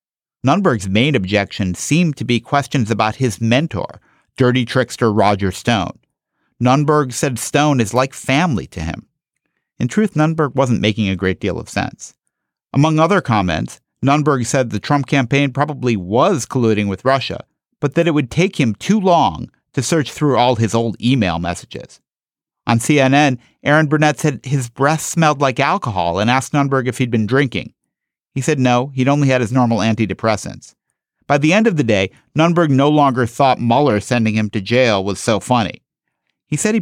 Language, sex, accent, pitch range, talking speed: English, male, American, 110-150 Hz, 175 wpm